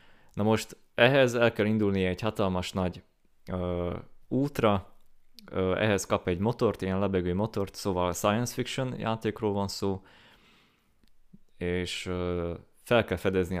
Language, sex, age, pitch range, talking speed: Hungarian, male, 20-39, 95-110 Hz, 130 wpm